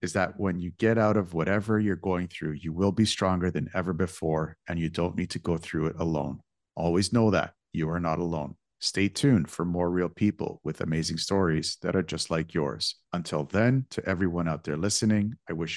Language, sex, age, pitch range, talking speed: English, male, 50-69, 80-105 Hz, 215 wpm